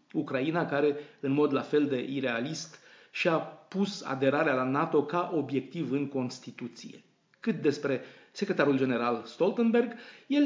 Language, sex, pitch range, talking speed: Romanian, male, 135-175 Hz, 130 wpm